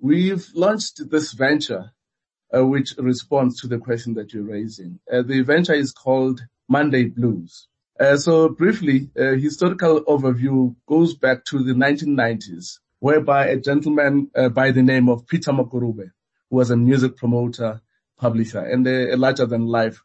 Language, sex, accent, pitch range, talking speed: English, male, South African, 120-145 Hz, 150 wpm